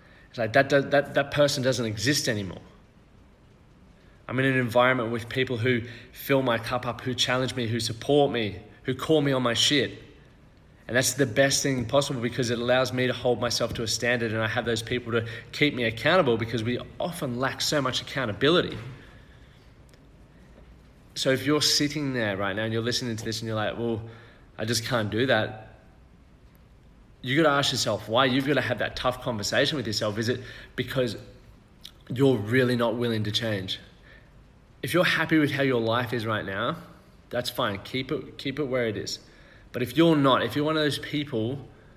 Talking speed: 195 wpm